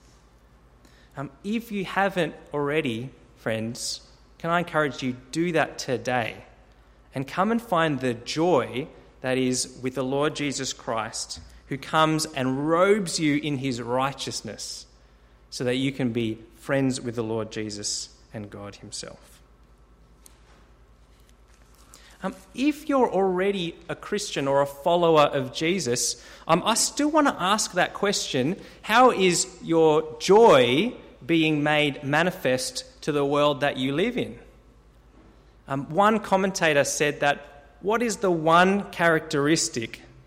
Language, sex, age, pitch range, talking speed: English, male, 20-39, 120-175 Hz, 135 wpm